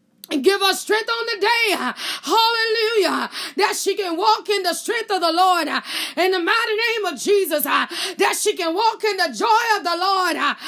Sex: female